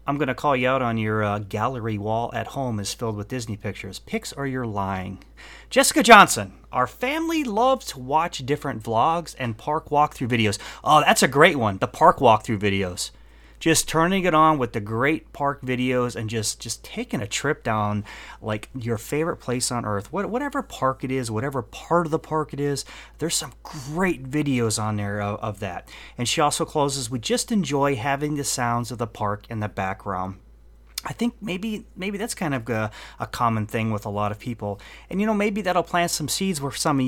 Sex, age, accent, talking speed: male, 30-49, American, 210 wpm